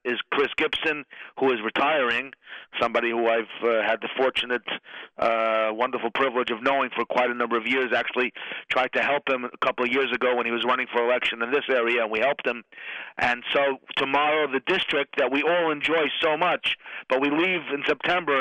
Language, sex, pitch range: English, male, 125-175 Hz